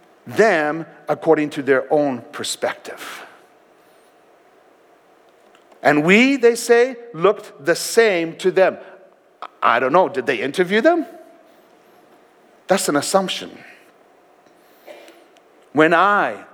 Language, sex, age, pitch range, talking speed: English, male, 60-79, 155-220 Hz, 100 wpm